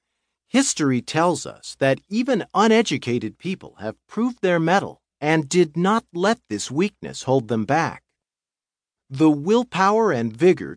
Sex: male